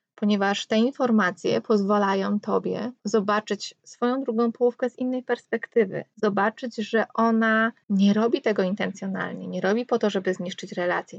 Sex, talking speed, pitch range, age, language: female, 140 wpm, 190-230 Hz, 20-39, Polish